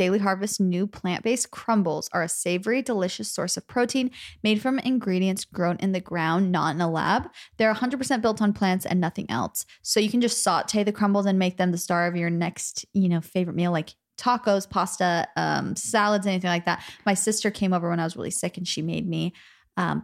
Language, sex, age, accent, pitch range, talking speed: English, female, 20-39, American, 175-215 Hz, 220 wpm